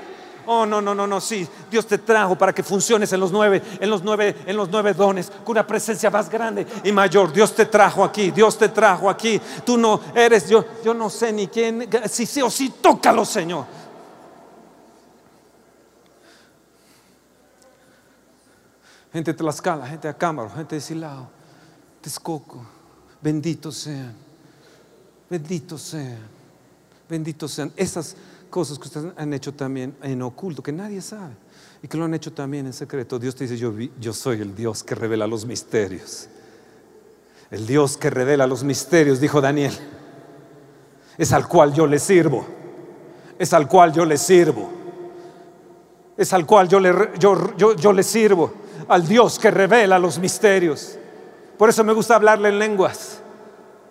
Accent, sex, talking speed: Mexican, male, 160 wpm